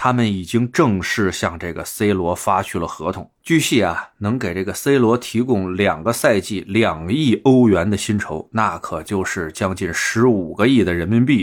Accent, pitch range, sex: native, 90-125 Hz, male